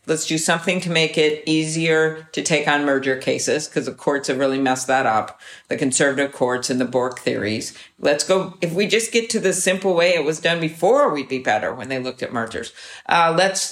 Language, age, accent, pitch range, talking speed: English, 50-69, American, 135-165 Hz, 225 wpm